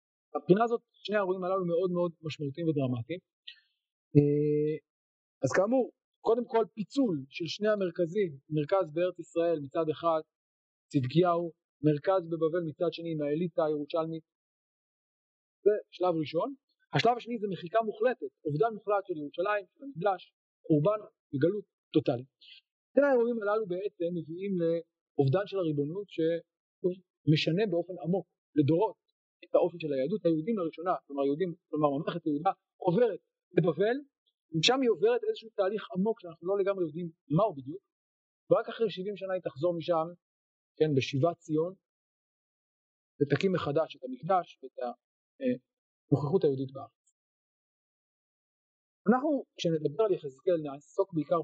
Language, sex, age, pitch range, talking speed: Hebrew, male, 40-59, 150-205 Hz, 125 wpm